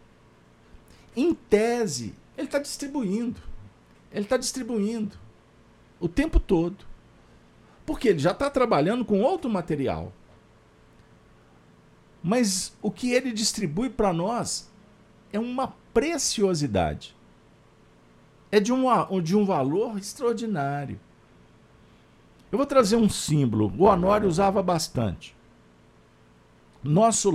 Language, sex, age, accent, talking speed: Portuguese, male, 50-69, Brazilian, 100 wpm